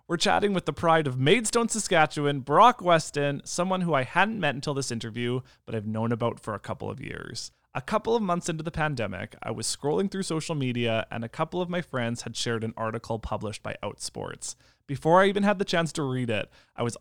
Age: 20-39